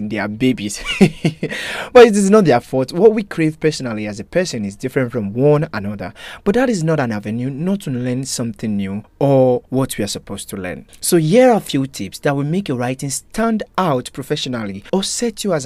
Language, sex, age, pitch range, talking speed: English, male, 30-49, 110-160 Hz, 220 wpm